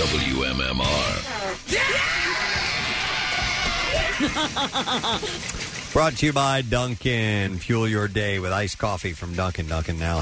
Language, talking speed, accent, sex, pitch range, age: English, 95 wpm, American, male, 100-140 Hz, 40-59